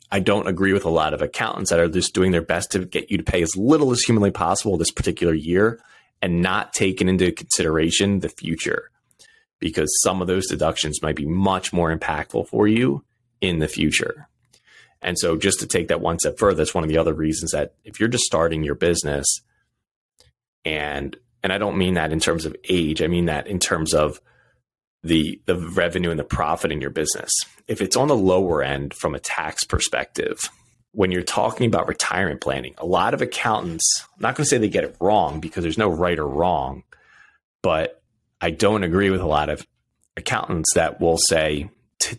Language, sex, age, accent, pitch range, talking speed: English, male, 30-49, American, 80-95 Hz, 205 wpm